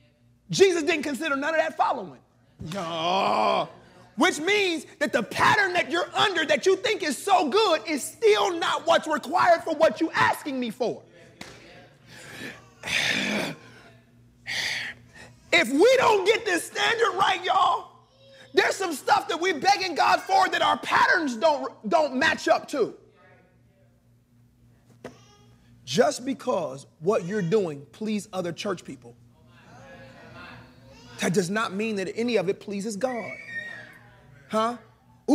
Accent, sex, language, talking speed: American, male, English, 130 wpm